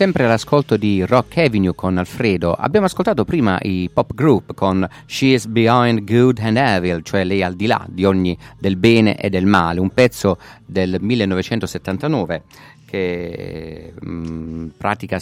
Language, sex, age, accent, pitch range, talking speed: Italian, male, 50-69, native, 90-115 Hz, 160 wpm